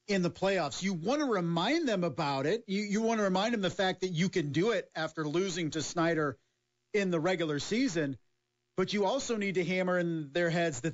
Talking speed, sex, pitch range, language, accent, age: 225 wpm, male, 135-190 Hz, English, American, 40-59